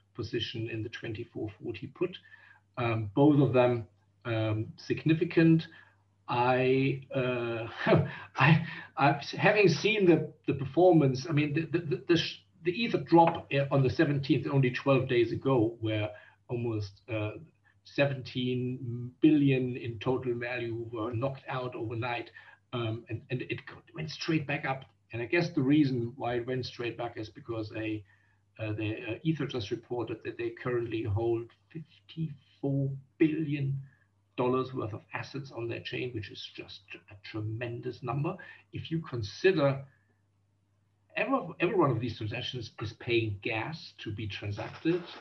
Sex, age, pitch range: male, 50-69, 110-145 Hz